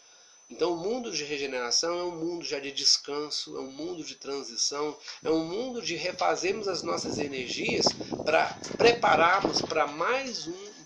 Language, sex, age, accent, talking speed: Portuguese, male, 40-59, Brazilian, 155 wpm